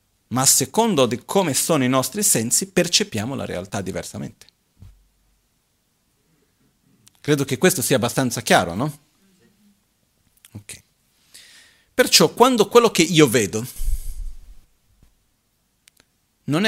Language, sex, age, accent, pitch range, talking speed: Italian, male, 40-59, native, 105-150 Hz, 100 wpm